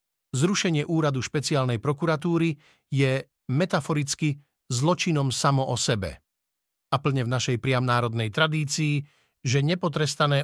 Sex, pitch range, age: male, 125-150 Hz, 50-69